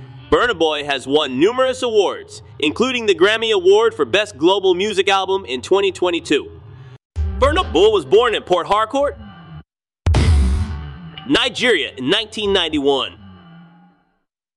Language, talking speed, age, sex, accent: English, 110 wpm, 30-49, male, American